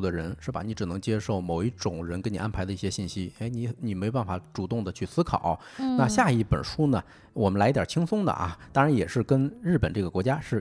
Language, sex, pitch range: Chinese, male, 100-135 Hz